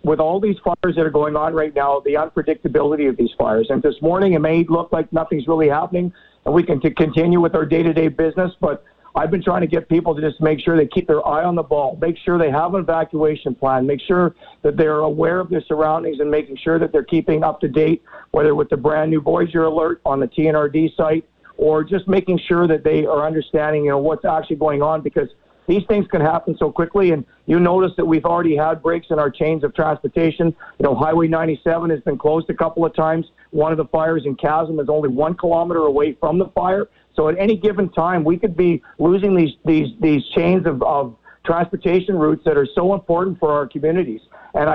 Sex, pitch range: male, 155-175 Hz